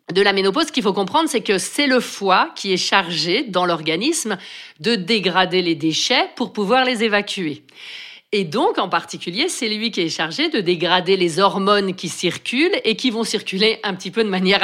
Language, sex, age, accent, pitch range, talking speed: French, female, 50-69, French, 170-225 Hz, 200 wpm